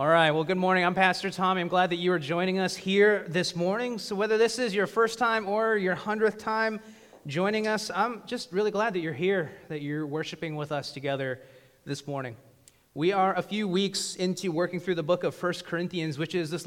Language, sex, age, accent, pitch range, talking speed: English, male, 30-49, American, 170-210 Hz, 225 wpm